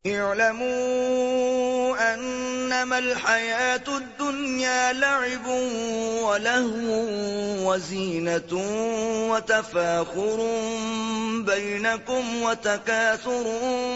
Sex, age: male, 30-49